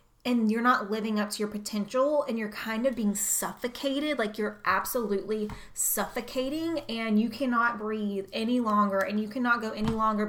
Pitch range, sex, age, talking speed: 210-260 Hz, female, 20-39, 175 wpm